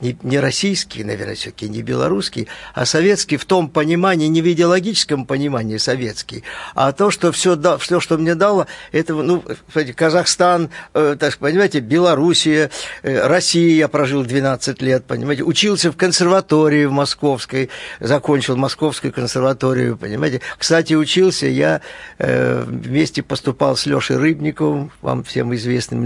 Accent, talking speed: native, 130 wpm